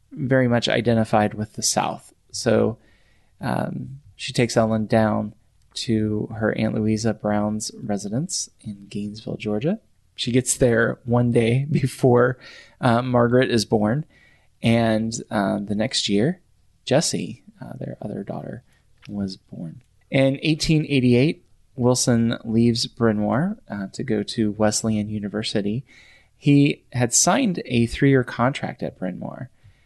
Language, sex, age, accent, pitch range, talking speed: English, male, 20-39, American, 105-130 Hz, 125 wpm